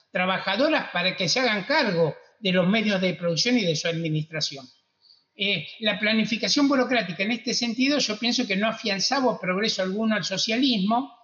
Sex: male